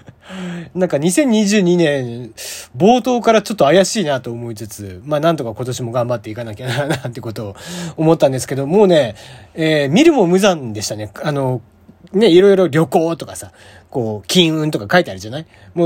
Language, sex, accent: Japanese, male, native